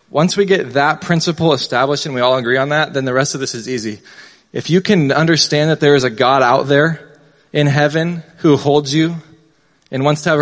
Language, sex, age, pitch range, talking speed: English, male, 20-39, 135-155 Hz, 225 wpm